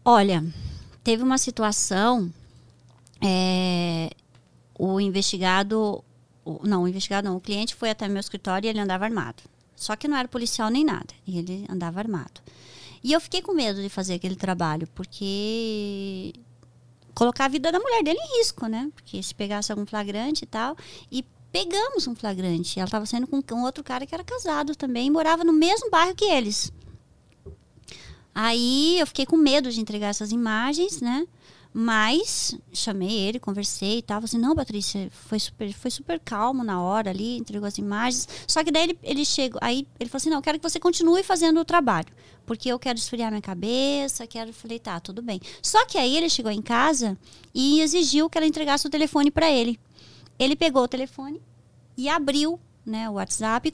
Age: 20-39